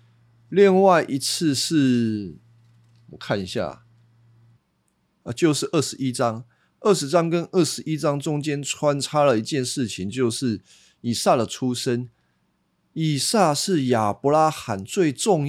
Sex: male